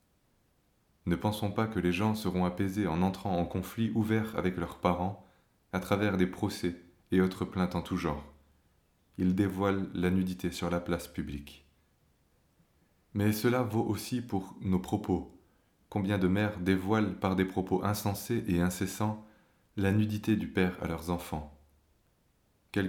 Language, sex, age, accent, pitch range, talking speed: French, male, 20-39, French, 90-105 Hz, 155 wpm